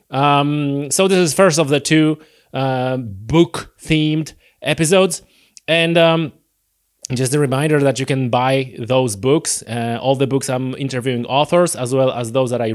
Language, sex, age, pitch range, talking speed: English, male, 30-49, 125-165 Hz, 165 wpm